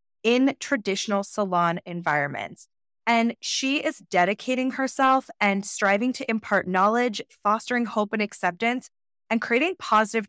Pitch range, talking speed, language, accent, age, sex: 180-235 Hz, 120 wpm, English, American, 20-39, female